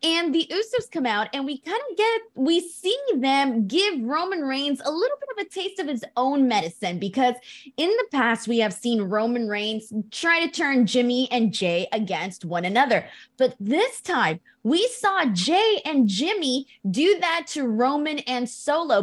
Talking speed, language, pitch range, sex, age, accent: 185 wpm, English, 215-300 Hz, female, 20-39, American